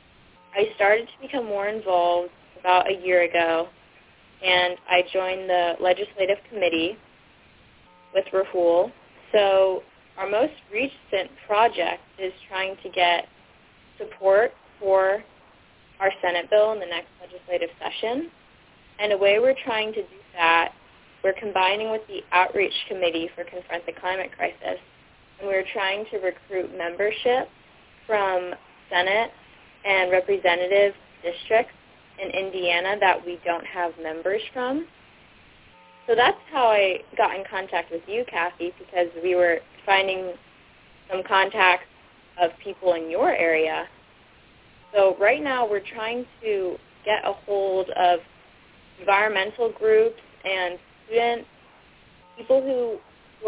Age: 20-39